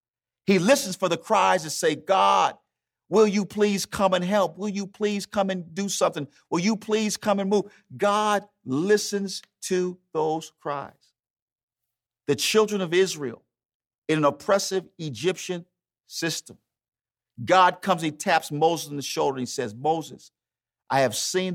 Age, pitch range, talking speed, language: 50-69, 125-185 Hz, 155 wpm, English